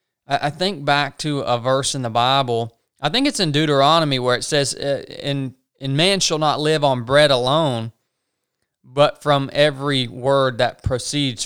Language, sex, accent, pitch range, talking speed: English, male, American, 125-155 Hz, 160 wpm